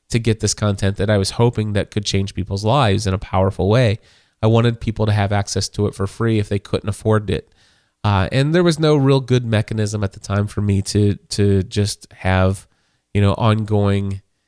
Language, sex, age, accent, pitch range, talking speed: English, male, 20-39, American, 100-130 Hz, 215 wpm